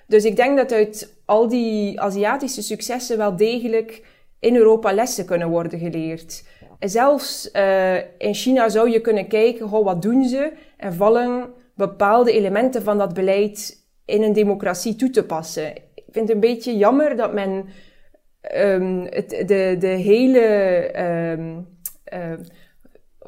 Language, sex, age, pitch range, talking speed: Dutch, female, 20-39, 190-225 Hz, 150 wpm